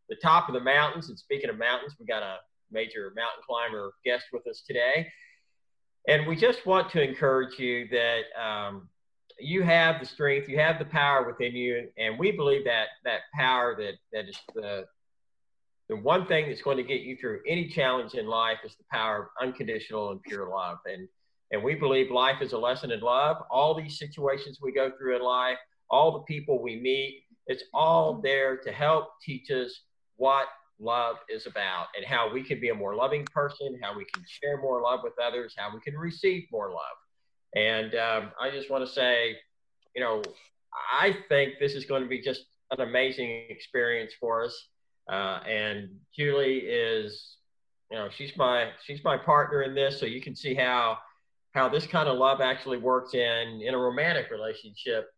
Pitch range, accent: 120-155 Hz, American